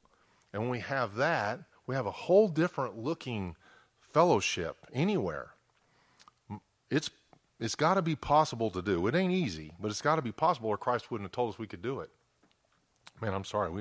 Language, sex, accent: English, male, American